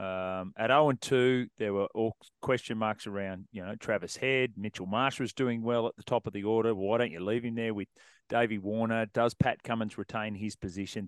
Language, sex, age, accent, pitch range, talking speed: English, male, 30-49, Australian, 105-140 Hz, 210 wpm